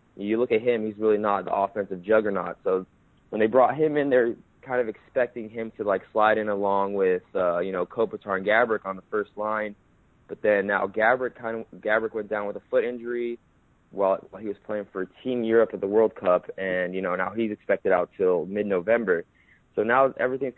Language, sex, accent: English, male, American